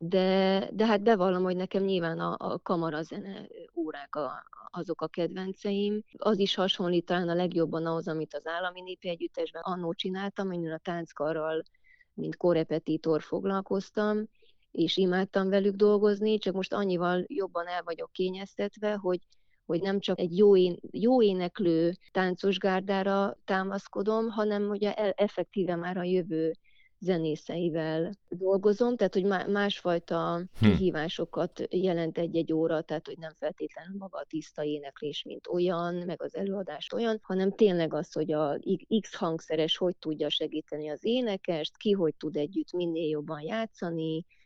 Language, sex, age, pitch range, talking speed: Hungarian, female, 20-39, 160-195 Hz, 145 wpm